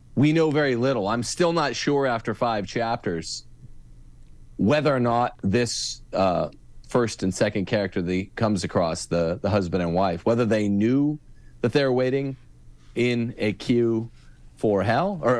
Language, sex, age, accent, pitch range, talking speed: English, male, 40-59, American, 95-125 Hz, 160 wpm